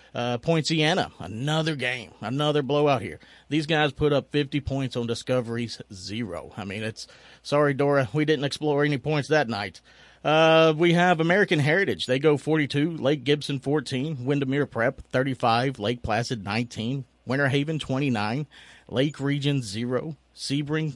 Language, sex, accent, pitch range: English, male, American, 115-155 Hz